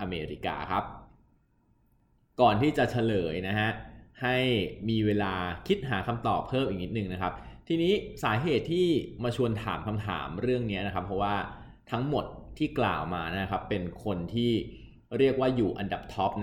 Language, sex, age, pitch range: Thai, male, 20-39, 95-125 Hz